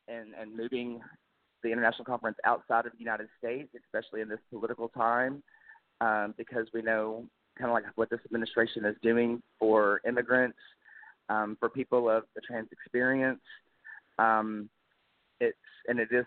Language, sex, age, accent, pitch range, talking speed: English, male, 30-49, American, 110-125 Hz, 155 wpm